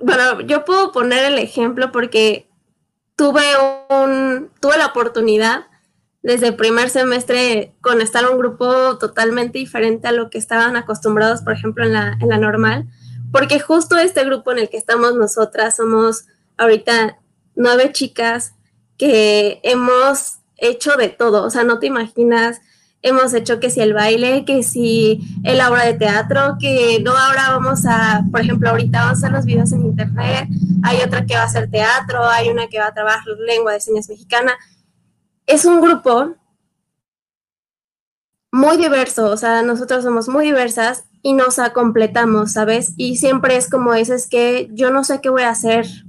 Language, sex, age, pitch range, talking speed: Spanish, female, 10-29, 215-255 Hz, 170 wpm